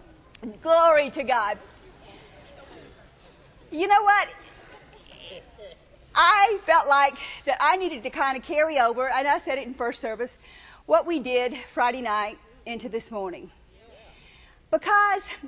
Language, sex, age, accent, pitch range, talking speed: English, female, 50-69, American, 210-320 Hz, 130 wpm